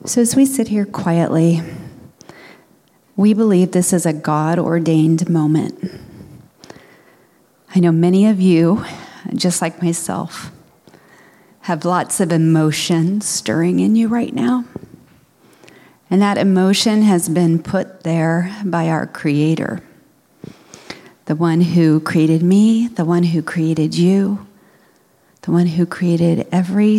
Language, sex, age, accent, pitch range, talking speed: English, female, 40-59, American, 165-200 Hz, 120 wpm